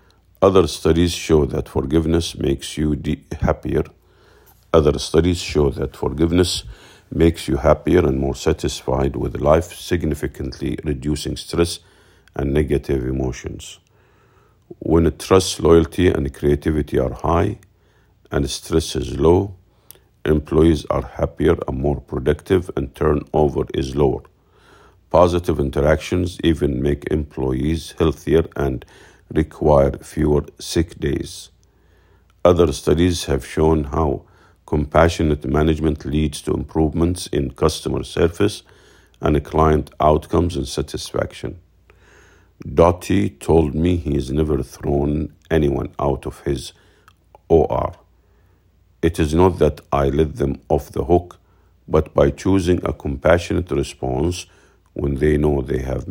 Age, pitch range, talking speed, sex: 50-69, 70-90 Hz, 120 wpm, male